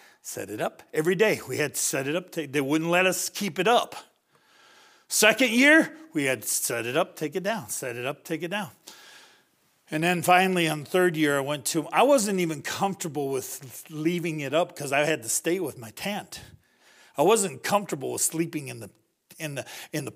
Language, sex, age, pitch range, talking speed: English, male, 50-69, 140-180 Hz, 210 wpm